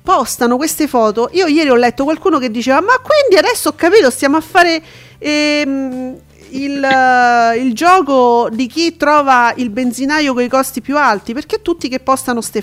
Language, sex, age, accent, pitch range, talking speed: Italian, female, 40-59, native, 235-300 Hz, 175 wpm